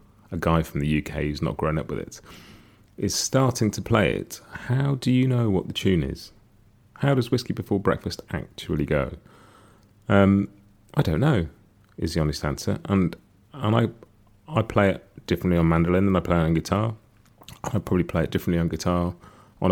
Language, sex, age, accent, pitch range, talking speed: English, male, 30-49, British, 85-110 Hz, 190 wpm